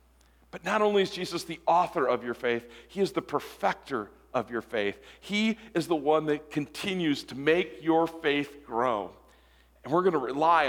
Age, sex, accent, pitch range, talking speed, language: 40-59, male, American, 155-210 Hz, 180 wpm, English